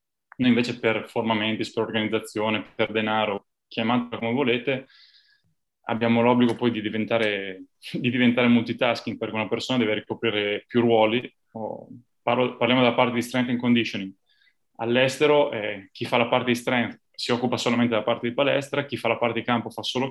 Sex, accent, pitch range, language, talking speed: male, native, 115-130 Hz, Italian, 170 wpm